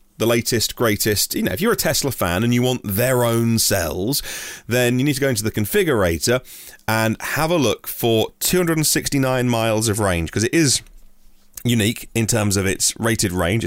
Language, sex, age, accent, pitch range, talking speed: English, male, 30-49, British, 95-135 Hz, 190 wpm